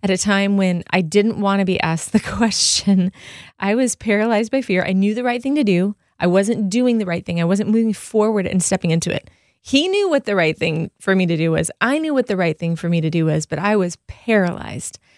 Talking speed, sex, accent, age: 255 wpm, female, American, 30-49